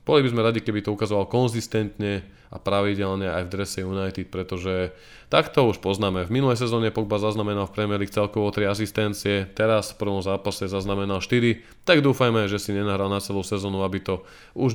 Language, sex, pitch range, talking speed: Slovak, male, 95-110 Hz, 185 wpm